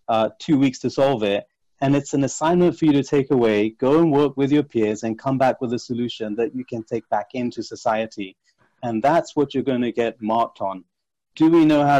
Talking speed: 235 wpm